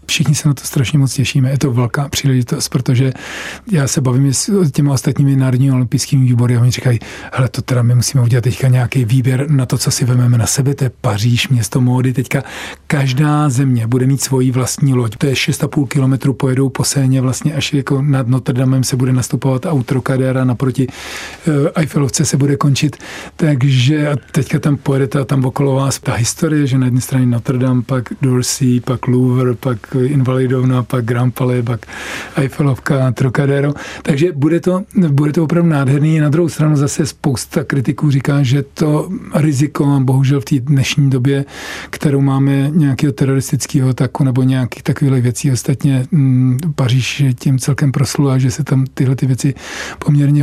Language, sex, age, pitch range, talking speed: Czech, male, 40-59, 130-150 Hz, 175 wpm